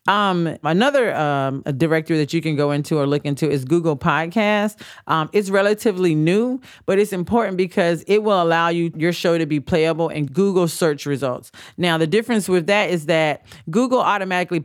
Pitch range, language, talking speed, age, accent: 145-185 Hz, English, 190 wpm, 40-59, American